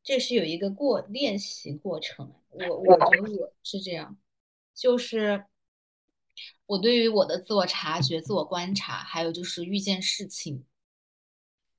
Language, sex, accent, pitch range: Chinese, female, native, 155-205 Hz